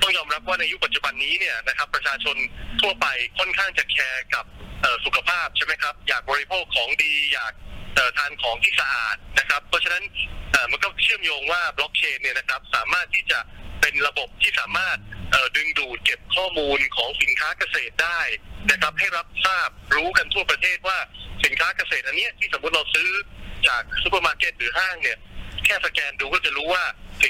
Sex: male